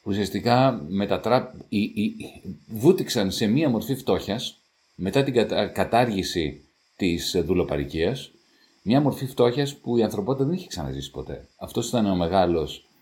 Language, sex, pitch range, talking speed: Greek, male, 80-120 Hz, 120 wpm